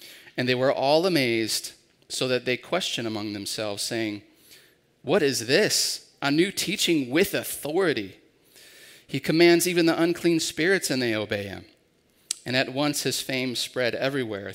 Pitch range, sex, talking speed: 115-160 Hz, male, 155 wpm